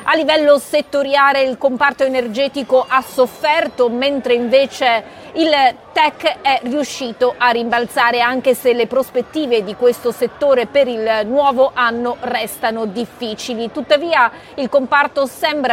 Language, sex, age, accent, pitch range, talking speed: Italian, female, 40-59, native, 230-285 Hz, 125 wpm